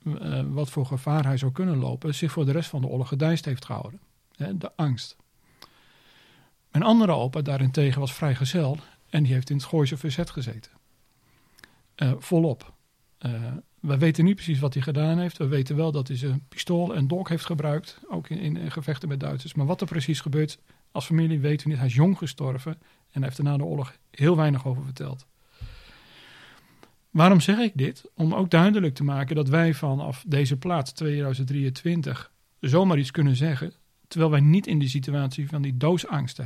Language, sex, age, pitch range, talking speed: Dutch, male, 40-59, 135-165 Hz, 195 wpm